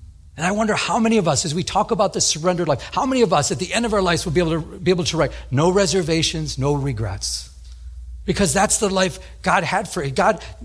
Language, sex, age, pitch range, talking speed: English, male, 40-59, 125-170 Hz, 240 wpm